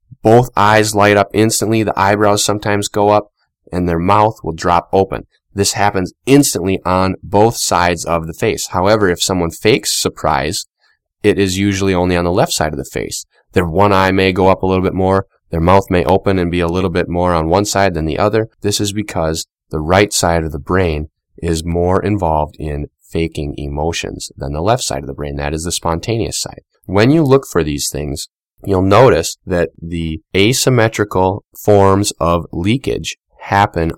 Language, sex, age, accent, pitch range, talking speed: English, male, 20-39, American, 85-105 Hz, 195 wpm